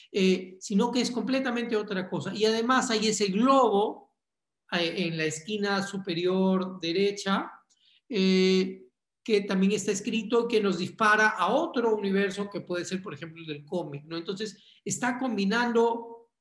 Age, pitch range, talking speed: 40-59, 170-215 Hz, 150 wpm